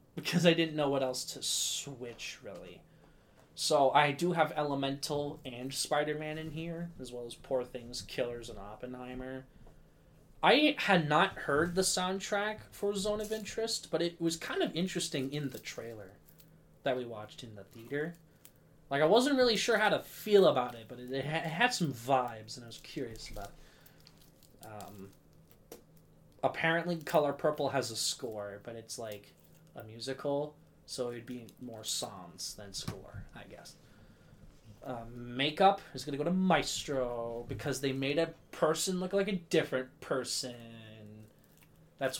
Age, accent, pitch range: 20-39, American, 125-170 Hz